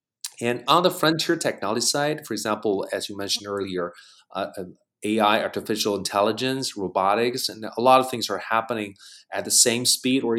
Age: 30-49